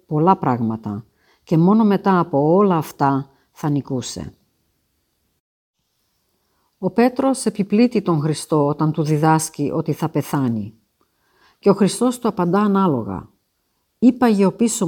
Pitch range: 145-200 Hz